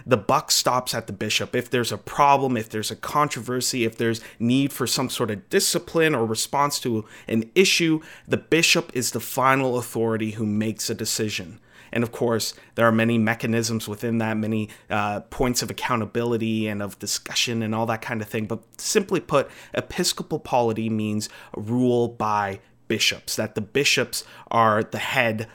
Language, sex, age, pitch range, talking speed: English, male, 30-49, 110-135 Hz, 175 wpm